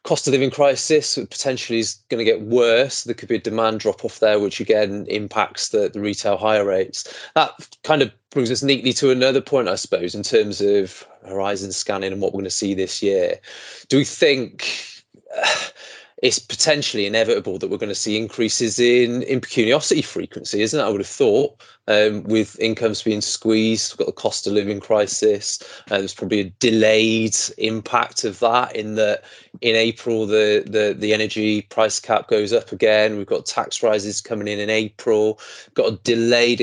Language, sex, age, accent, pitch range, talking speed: English, male, 20-39, British, 105-125 Hz, 190 wpm